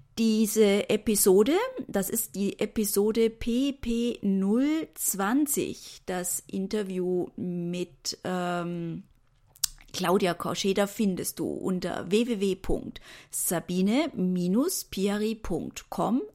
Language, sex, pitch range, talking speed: German, female, 185-225 Hz, 60 wpm